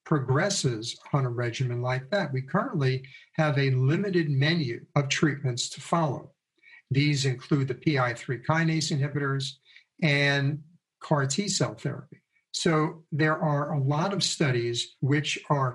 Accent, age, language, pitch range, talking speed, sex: American, 60-79, English, 130-160 Hz, 135 wpm, male